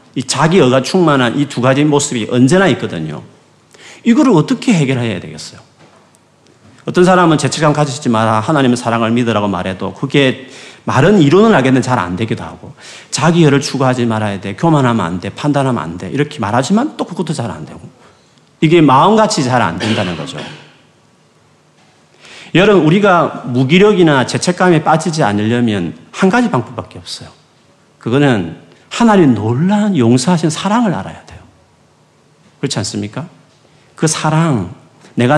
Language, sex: Korean, male